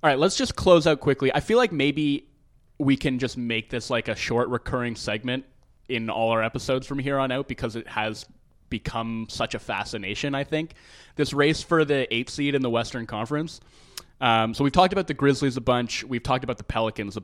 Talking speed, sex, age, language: 220 wpm, male, 20-39, English